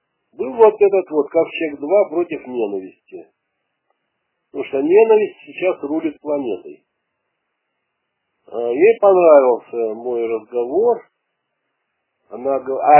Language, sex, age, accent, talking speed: Russian, male, 60-79, native, 100 wpm